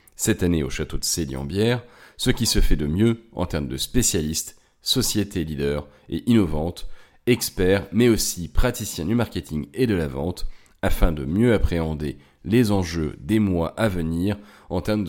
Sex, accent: male, French